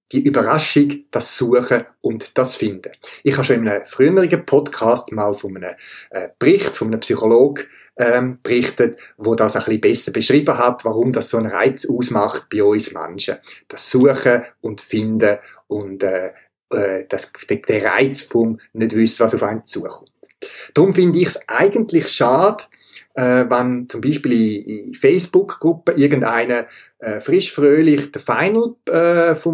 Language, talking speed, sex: German, 150 wpm, male